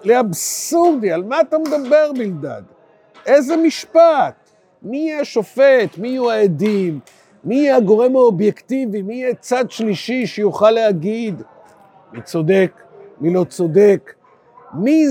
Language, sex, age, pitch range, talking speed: Hebrew, male, 50-69, 170-225 Hz, 120 wpm